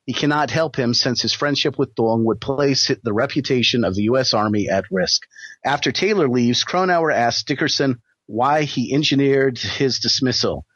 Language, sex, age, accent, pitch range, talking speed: English, male, 40-59, American, 105-140 Hz, 165 wpm